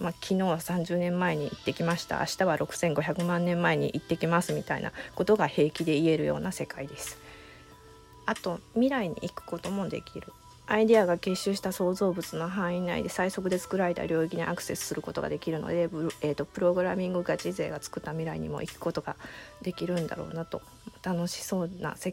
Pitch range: 160-190 Hz